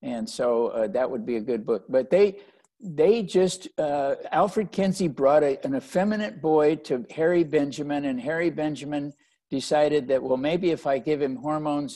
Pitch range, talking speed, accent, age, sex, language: 130-165 Hz, 180 wpm, American, 60-79, male, English